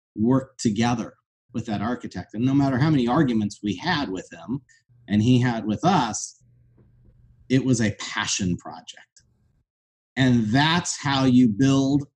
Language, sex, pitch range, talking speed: English, male, 115-135 Hz, 150 wpm